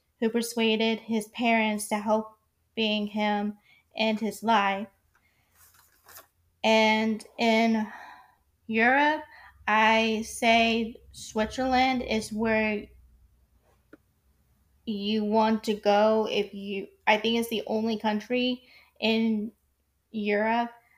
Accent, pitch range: American, 205-225 Hz